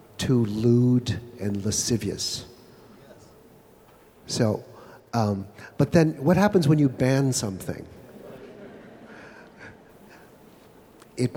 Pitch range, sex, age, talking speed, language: 110-135 Hz, male, 50-69, 80 wpm, English